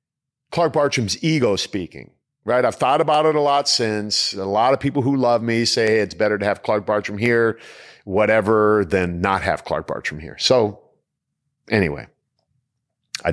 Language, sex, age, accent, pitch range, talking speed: English, male, 40-59, American, 95-130 Hz, 165 wpm